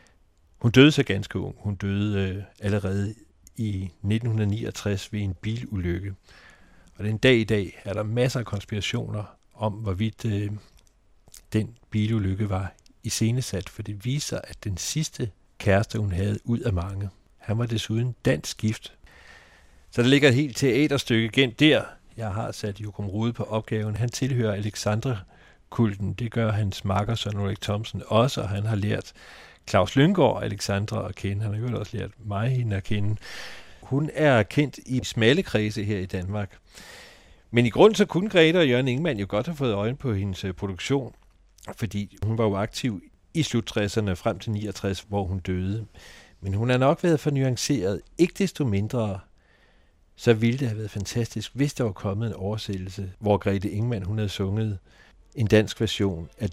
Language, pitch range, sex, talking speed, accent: Danish, 100-115 Hz, male, 175 wpm, native